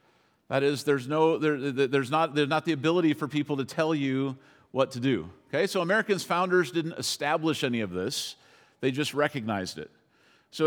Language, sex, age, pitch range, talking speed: English, male, 50-69, 135-170 Hz, 185 wpm